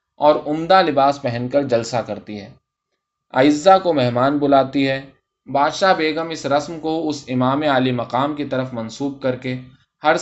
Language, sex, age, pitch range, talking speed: Urdu, male, 20-39, 125-155 Hz, 165 wpm